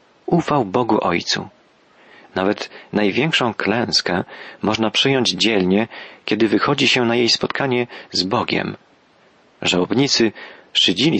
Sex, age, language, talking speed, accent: male, 40-59, Polish, 100 wpm, native